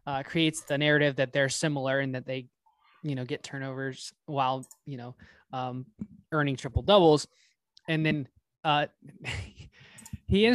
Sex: male